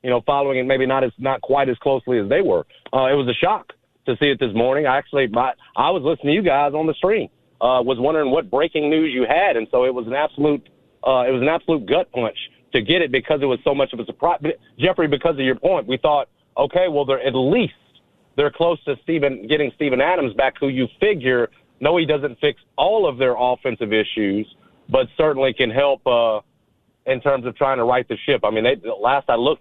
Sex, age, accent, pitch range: male, 40-59, American, 130-150 Hz